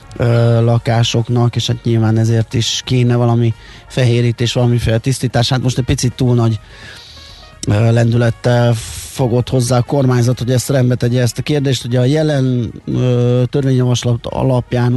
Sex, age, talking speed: male, 20-39, 140 wpm